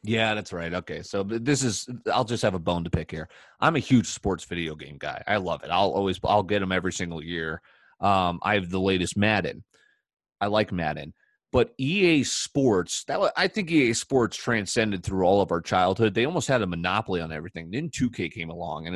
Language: English